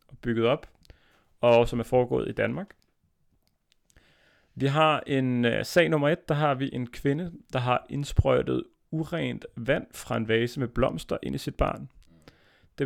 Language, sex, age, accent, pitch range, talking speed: Danish, male, 30-49, native, 115-140 Hz, 160 wpm